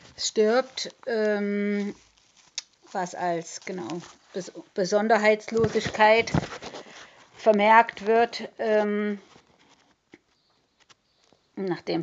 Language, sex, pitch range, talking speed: German, female, 185-210 Hz, 50 wpm